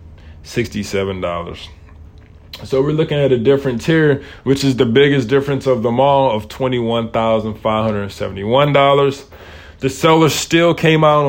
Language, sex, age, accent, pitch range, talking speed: English, male, 20-39, American, 105-135 Hz, 120 wpm